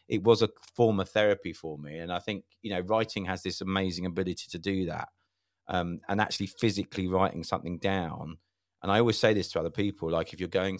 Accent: British